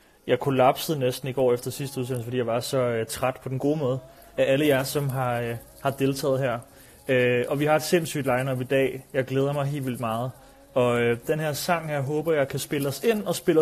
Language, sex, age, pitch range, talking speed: Danish, male, 30-49, 125-150 Hz, 245 wpm